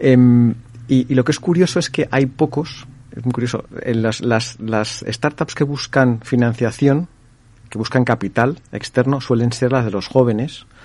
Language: Spanish